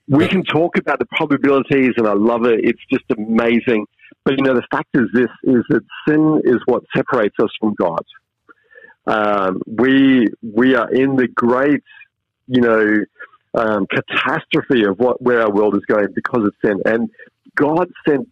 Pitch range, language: 110-135 Hz, English